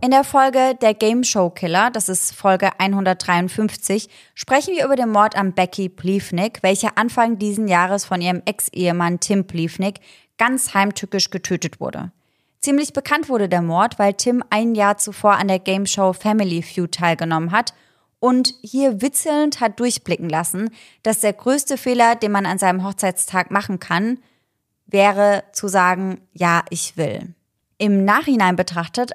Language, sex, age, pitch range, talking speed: German, female, 20-39, 180-230 Hz, 155 wpm